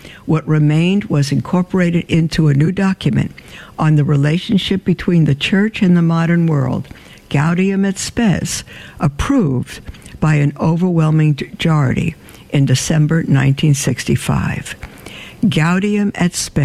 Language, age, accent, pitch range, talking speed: English, 60-79, American, 150-195 Hz, 105 wpm